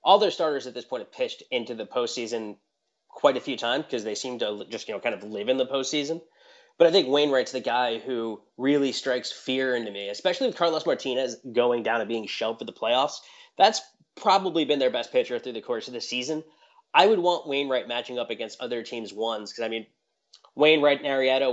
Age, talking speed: 20-39, 225 wpm